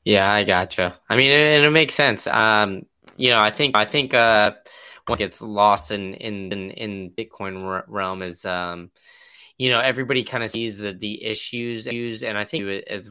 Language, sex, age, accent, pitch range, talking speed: English, male, 10-29, American, 95-105 Hz, 190 wpm